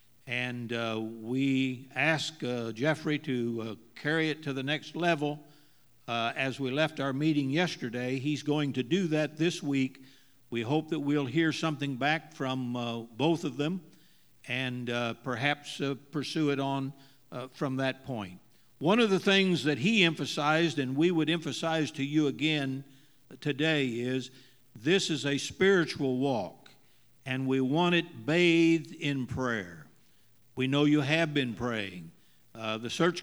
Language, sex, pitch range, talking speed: English, male, 125-160 Hz, 160 wpm